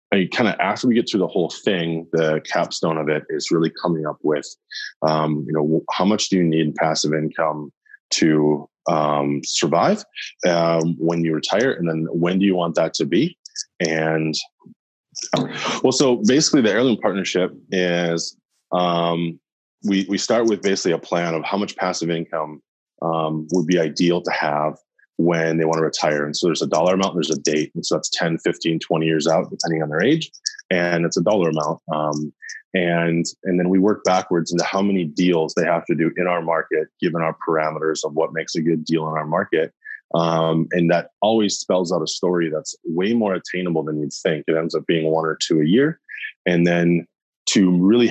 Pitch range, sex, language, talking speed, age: 80-90 Hz, male, English, 200 wpm, 20-39